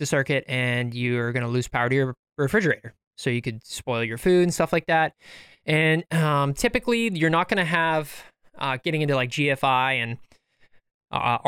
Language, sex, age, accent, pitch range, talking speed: English, male, 20-39, American, 120-155 Hz, 185 wpm